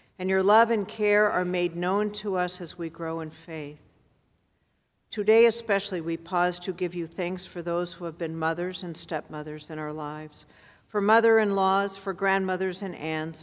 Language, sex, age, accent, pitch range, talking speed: English, female, 60-79, American, 165-200 Hz, 180 wpm